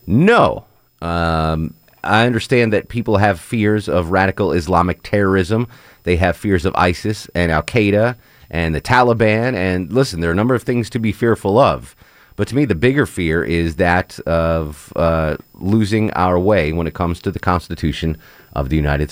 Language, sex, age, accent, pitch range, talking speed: English, male, 30-49, American, 80-105 Hz, 175 wpm